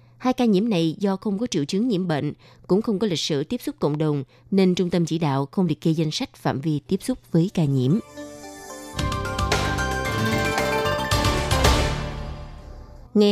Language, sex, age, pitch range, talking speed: Vietnamese, female, 20-39, 145-210 Hz, 170 wpm